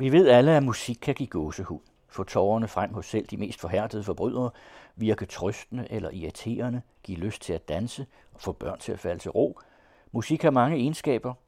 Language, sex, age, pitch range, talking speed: Danish, male, 60-79, 85-115 Hz, 200 wpm